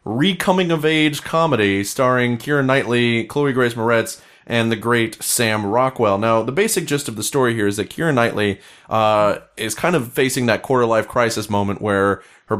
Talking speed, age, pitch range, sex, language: 185 wpm, 30-49, 115-140 Hz, male, English